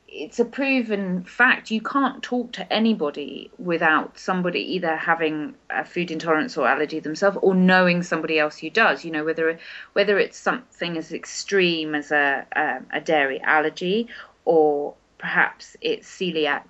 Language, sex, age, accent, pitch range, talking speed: English, female, 30-49, British, 150-195 Hz, 155 wpm